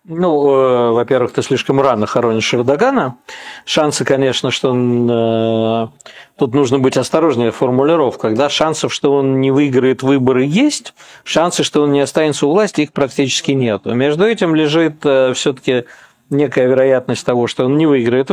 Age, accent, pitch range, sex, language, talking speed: 50-69, native, 120-150 Hz, male, Russian, 145 wpm